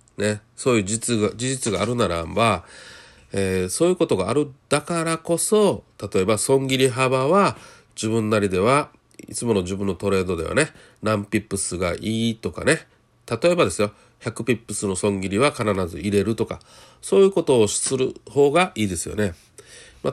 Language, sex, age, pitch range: Japanese, male, 40-59, 105-145 Hz